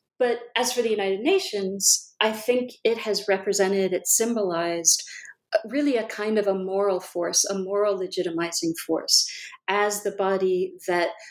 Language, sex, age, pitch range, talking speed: English, female, 40-59, 185-225 Hz, 150 wpm